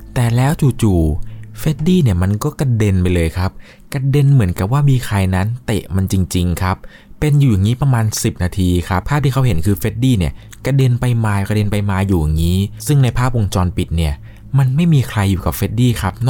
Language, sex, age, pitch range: Thai, male, 20-39, 85-110 Hz